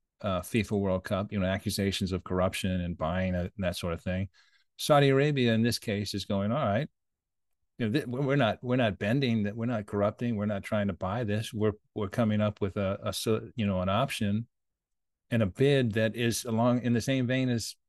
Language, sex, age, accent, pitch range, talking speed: English, male, 40-59, American, 100-120 Hz, 220 wpm